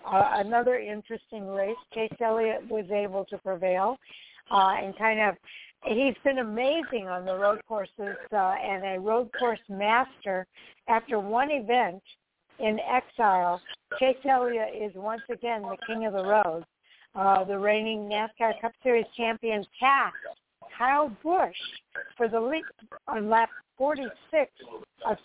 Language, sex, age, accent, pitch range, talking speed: English, female, 60-79, American, 200-240 Hz, 140 wpm